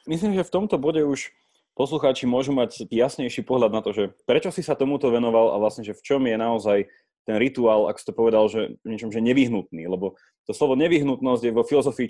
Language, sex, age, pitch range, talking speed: Slovak, male, 20-39, 115-160 Hz, 215 wpm